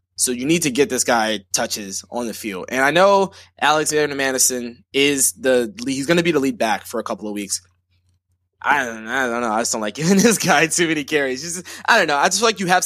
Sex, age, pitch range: male, 20-39, 120-165 Hz